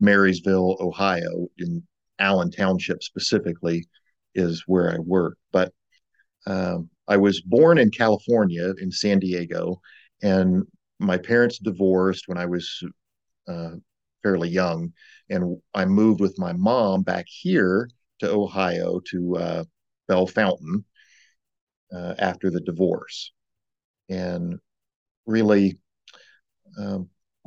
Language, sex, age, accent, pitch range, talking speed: English, male, 50-69, American, 90-100 Hz, 110 wpm